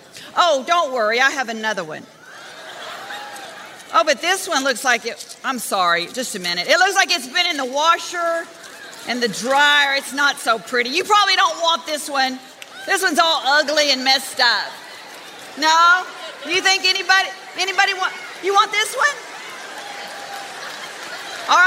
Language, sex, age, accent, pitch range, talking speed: English, female, 40-59, American, 255-370 Hz, 160 wpm